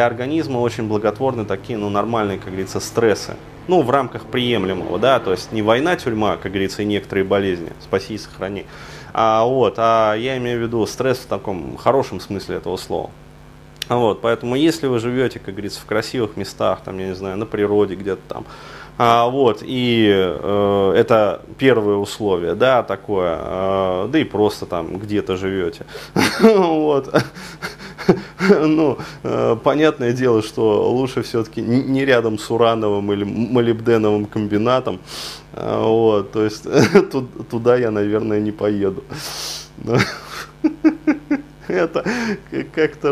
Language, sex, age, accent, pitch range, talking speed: Russian, male, 20-39, native, 105-145 Hz, 135 wpm